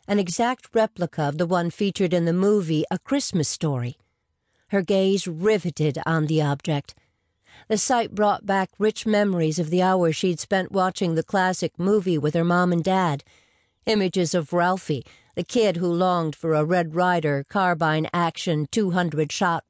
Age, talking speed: 50-69, 160 wpm